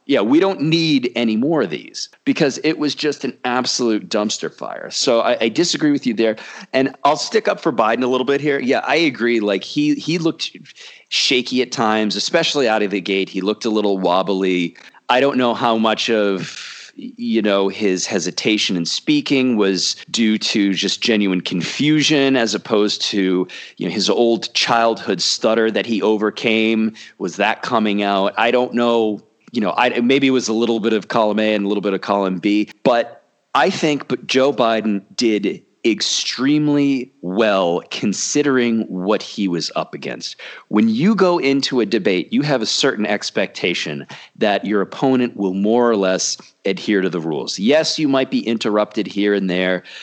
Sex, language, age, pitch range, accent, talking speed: male, English, 40-59, 100-135 Hz, American, 185 wpm